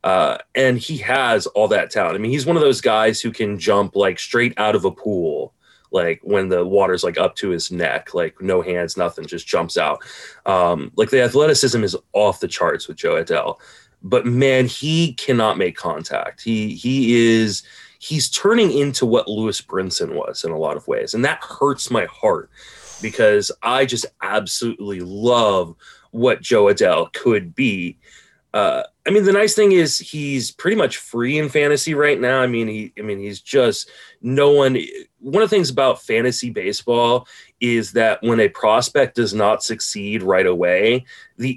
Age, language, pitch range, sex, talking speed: 30-49, English, 115-170 Hz, male, 185 wpm